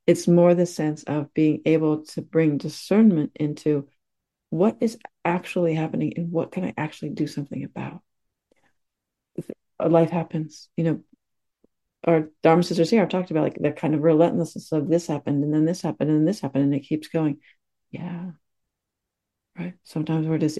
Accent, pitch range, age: American, 155-180 Hz, 40-59